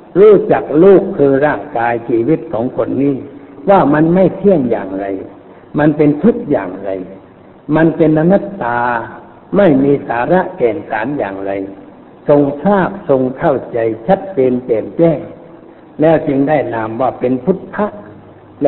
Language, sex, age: Thai, male, 60-79